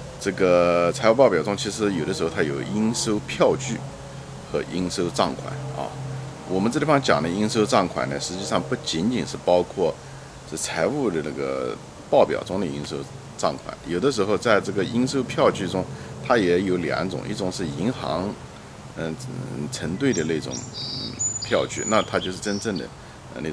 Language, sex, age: Chinese, male, 50-69